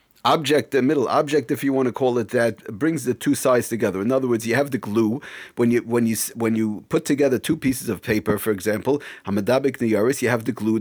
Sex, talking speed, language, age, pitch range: male, 240 wpm, English, 40-59, 110-130 Hz